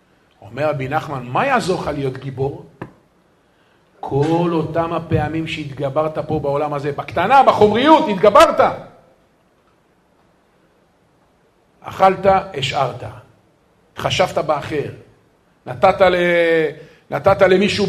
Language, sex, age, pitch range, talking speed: Hebrew, male, 50-69, 135-180 Hz, 80 wpm